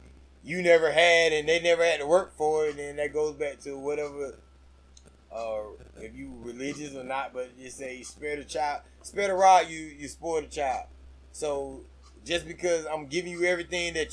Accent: American